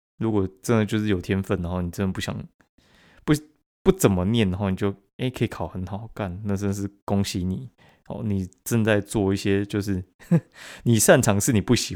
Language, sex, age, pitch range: Chinese, male, 20-39, 90-110 Hz